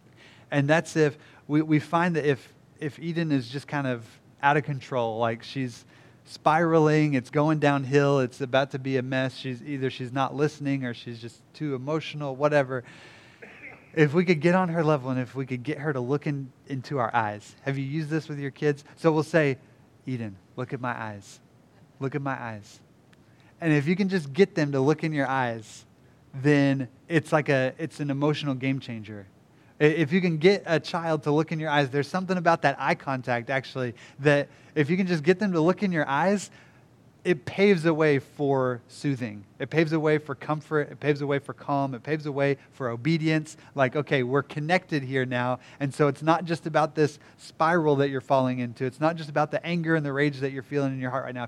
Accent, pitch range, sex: American, 130-155 Hz, male